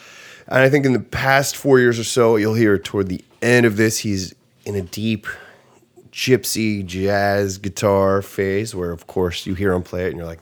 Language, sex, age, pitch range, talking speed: English, male, 30-49, 95-115 Hz, 205 wpm